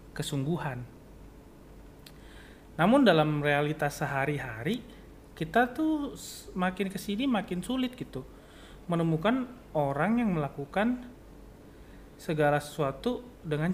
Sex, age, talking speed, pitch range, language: male, 30-49, 85 wpm, 140-185 Hz, Indonesian